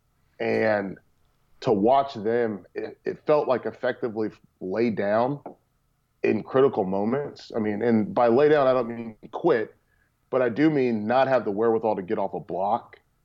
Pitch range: 110-130 Hz